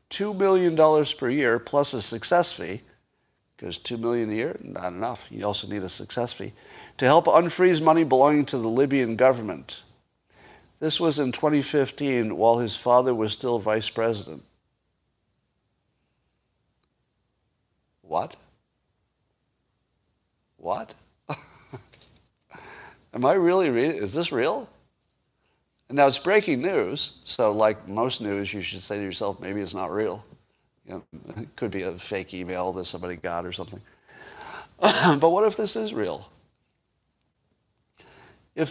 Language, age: English, 50-69